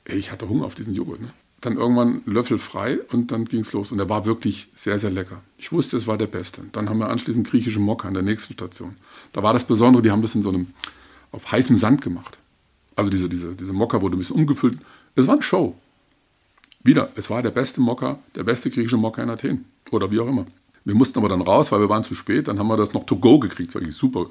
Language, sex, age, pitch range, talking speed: German, male, 50-69, 105-145 Hz, 255 wpm